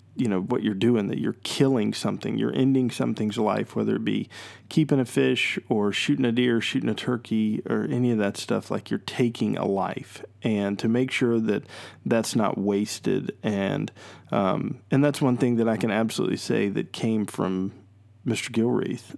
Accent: American